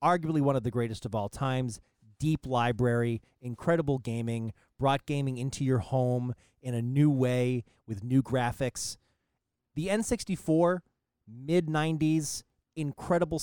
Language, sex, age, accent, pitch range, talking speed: English, male, 30-49, American, 115-145 Hz, 125 wpm